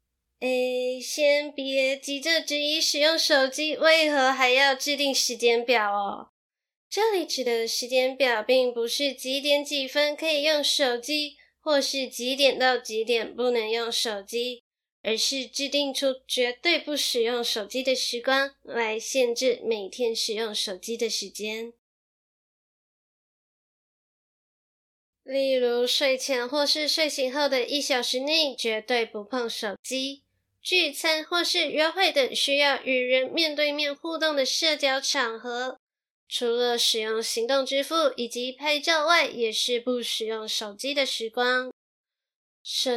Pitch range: 235-290 Hz